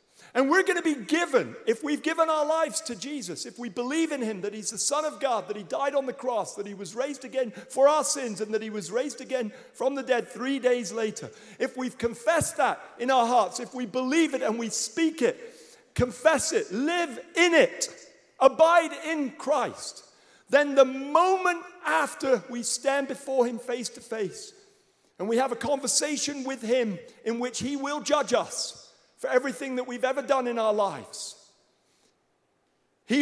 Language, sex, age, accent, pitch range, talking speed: English, male, 50-69, British, 245-320 Hz, 195 wpm